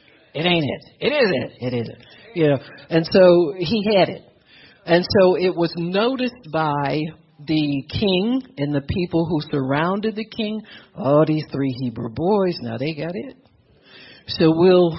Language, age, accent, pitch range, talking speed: English, 60-79, American, 140-210 Hz, 160 wpm